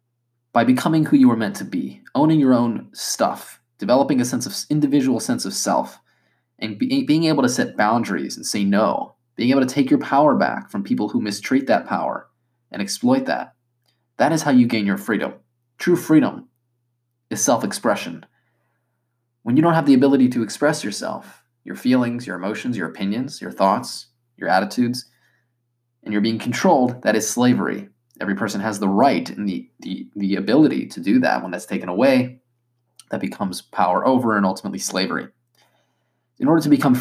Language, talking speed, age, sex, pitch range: English, 180 wpm, 20-39, male, 115-130 Hz